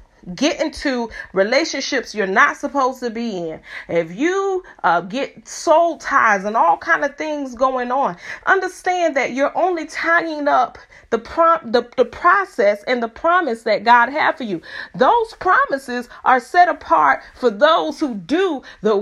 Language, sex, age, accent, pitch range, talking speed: English, female, 30-49, American, 235-310 Hz, 160 wpm